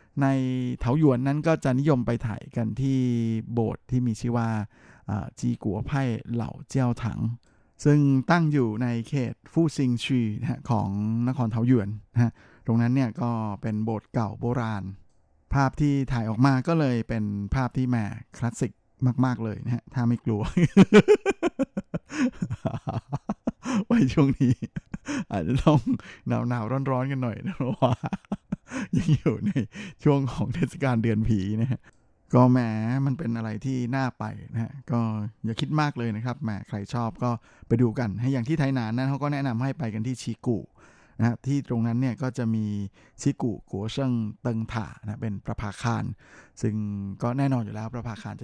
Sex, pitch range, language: male, 110-135 Hz, Thai